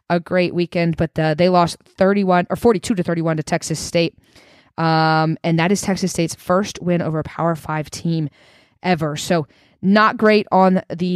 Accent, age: American, 20-39